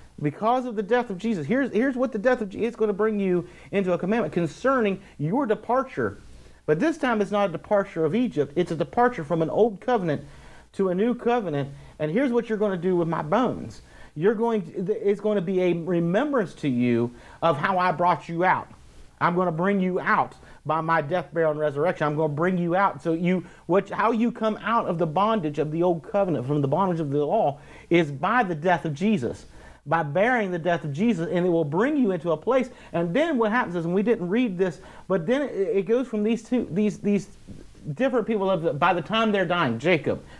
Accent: American